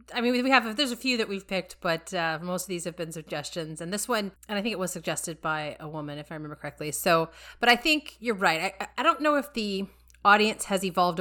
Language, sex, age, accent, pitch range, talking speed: English, female, 30-49, American, 165-200 Hz, 260 wpm